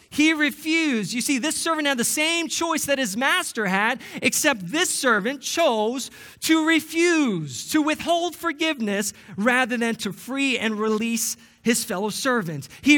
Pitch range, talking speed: 145-210 Hz, 155 wpm